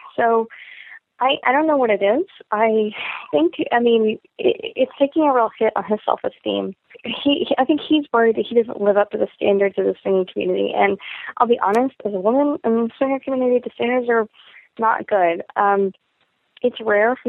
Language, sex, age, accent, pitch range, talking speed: English, female, 20-39, American, 200-240 Hz, 200 wpm